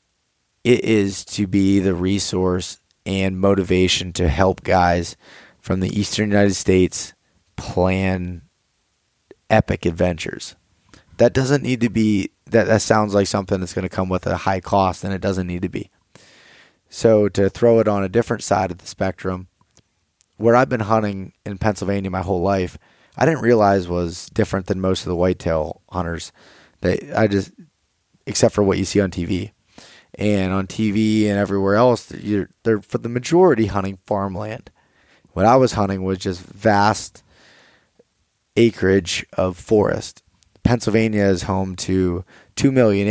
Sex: male